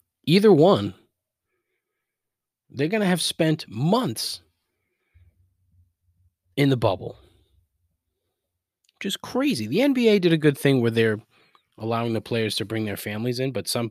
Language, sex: English, male